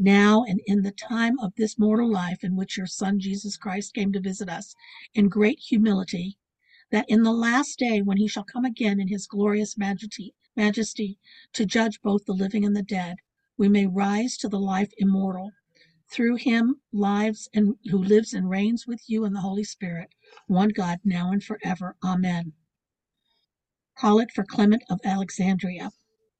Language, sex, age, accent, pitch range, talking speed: English, female, 50-69, American, 195-230 Hz, 175 wpm